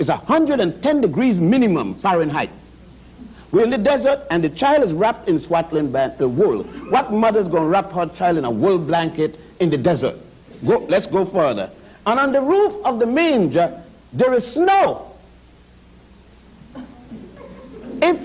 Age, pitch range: 60-79, 175-275 Hz